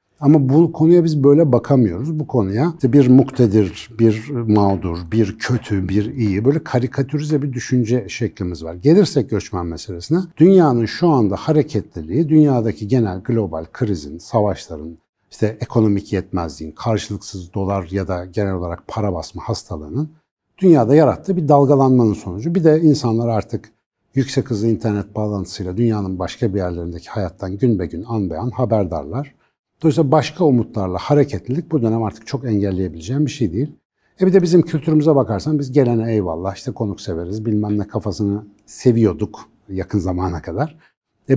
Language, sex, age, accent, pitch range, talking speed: Turkish, male, 60-79, native, 100-140 Hz, 150 wpm